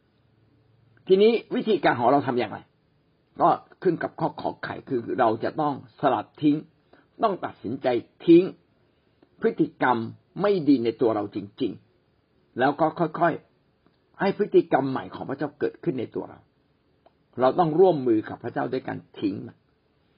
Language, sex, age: Thai, male, 60-79